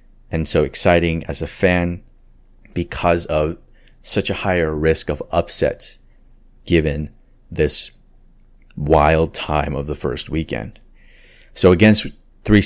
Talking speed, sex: 120 wpm, male